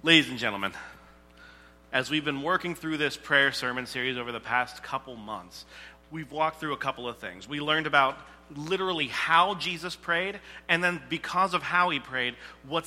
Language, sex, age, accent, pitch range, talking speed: English, male, 40-59, American, 135-165 Hz, 180 wpm